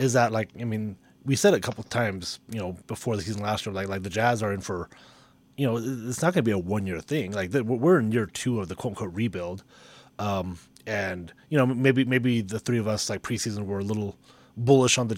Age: 30-49